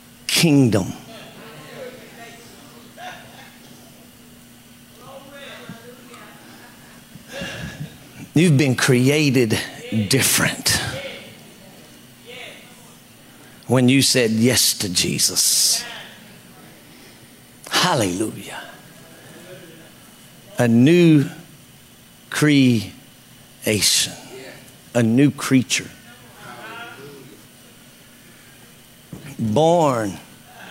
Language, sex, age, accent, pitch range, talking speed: English, male, 50-69, American, 125-155 Hz, 35 wpm